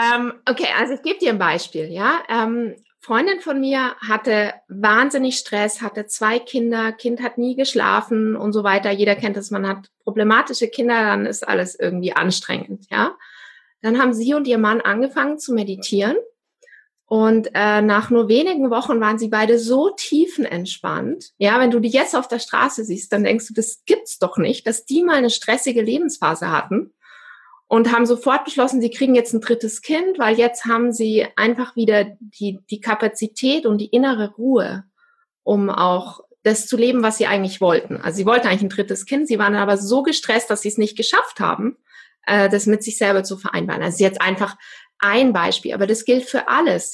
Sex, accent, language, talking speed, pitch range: female, German, German, 190 wpm, 210-255 Hz